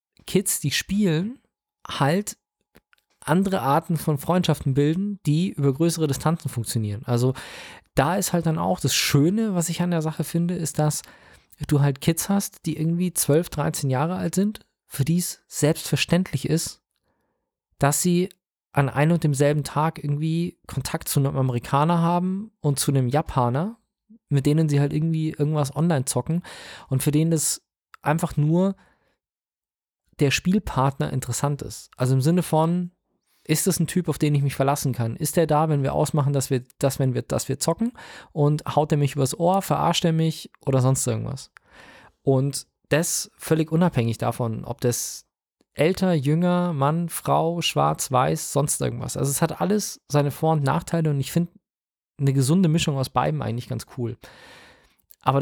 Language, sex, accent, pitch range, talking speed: German, male, German, 140-170 Hz, 170 wpm